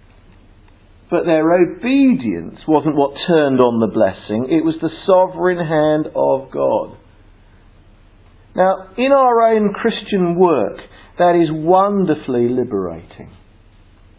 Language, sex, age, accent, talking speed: English, male, 50-69, British, 110 wpm